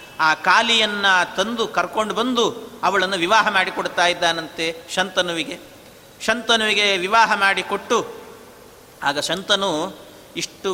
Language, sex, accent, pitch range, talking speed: Kannada, male, native, 200-255 Hz, 90 wpm